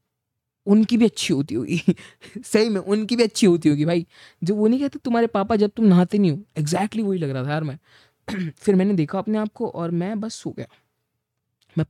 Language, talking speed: Hindi, 215 wpm